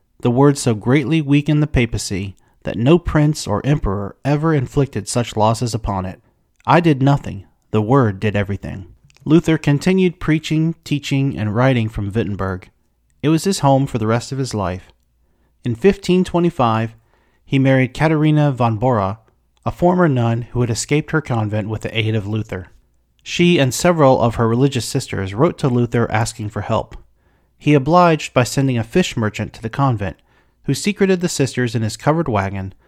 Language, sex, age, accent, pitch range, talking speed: English, male, 40-59, American, 105-150 Hz, 170 wpm